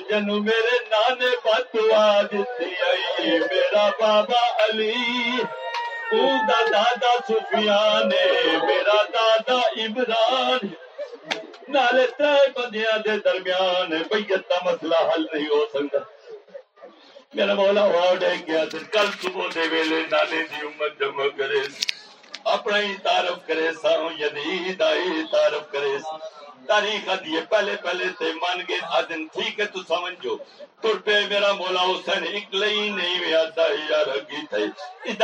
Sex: male